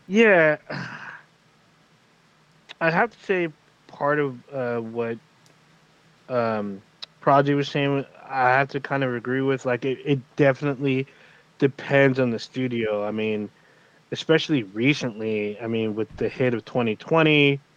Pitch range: 130-160 Hz